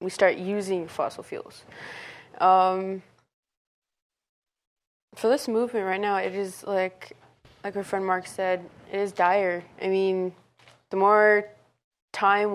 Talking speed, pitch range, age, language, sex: 130 wpm, 180-200 Hz, 20-39, English, female